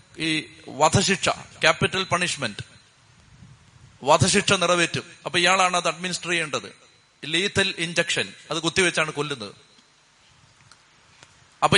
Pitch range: 165-190 Hz